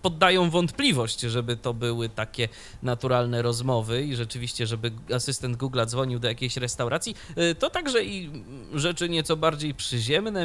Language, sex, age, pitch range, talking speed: Polish, male, 20-39, 115-140 Hz, 140 wpm